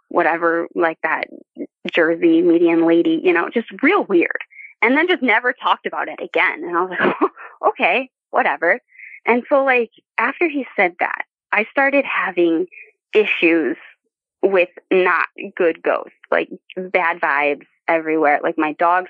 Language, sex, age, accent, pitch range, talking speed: English, female, 20-39, American, 170-280 Hz, 150 wpm